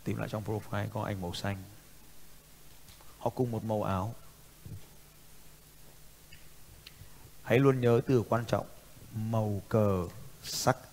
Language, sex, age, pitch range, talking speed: Vietnamese, male, 20-39, 105-135 Hz, 120 wpm